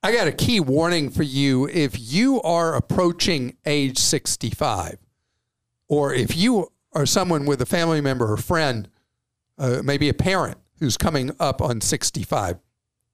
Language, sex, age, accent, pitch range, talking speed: English, male, 50-69, American, 125-175 Hz, 150 wpm